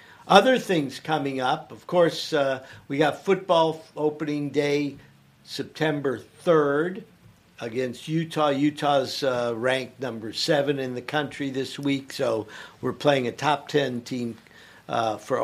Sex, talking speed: male, 135 wpm